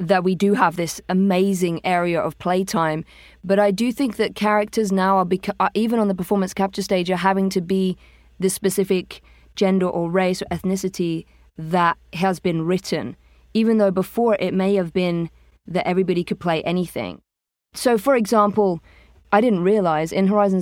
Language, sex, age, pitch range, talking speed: English, female, 20-39, 170-200 Hz, 175 wpm